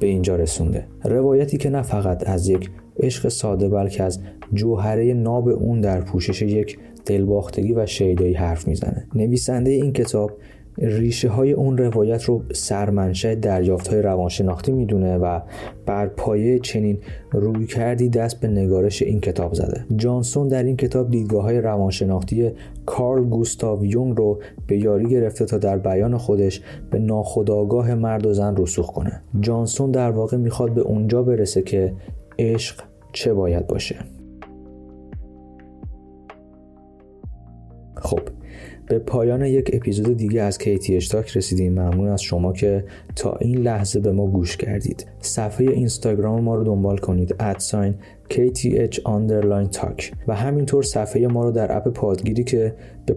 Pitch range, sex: 95-120 Hz, male